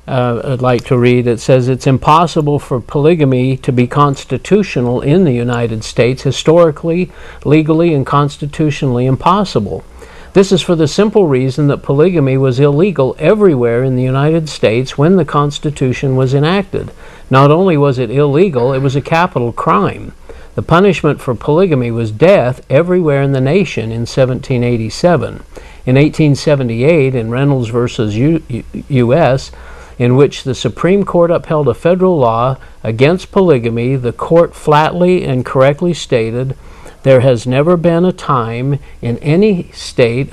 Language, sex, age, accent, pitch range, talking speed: English, male, 50-69, American, 125-165 Hz, 145 wpm